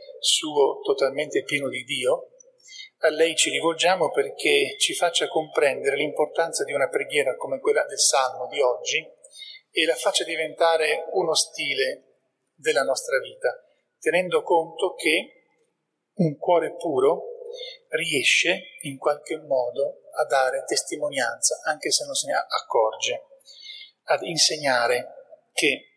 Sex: male